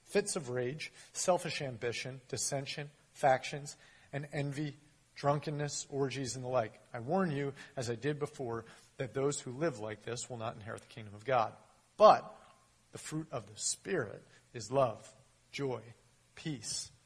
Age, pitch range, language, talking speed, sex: 40-59, 110-140 Hz, English, 155 wpm, male